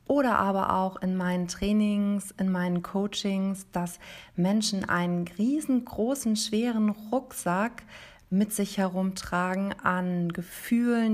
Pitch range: 185-215 Hz